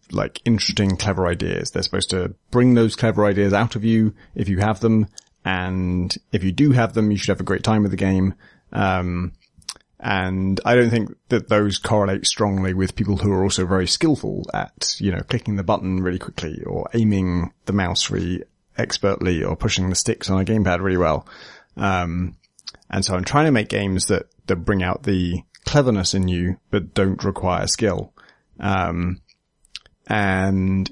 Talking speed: 180 wpm